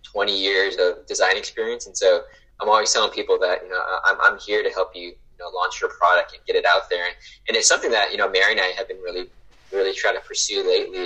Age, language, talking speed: 20-39, English, 260 wpm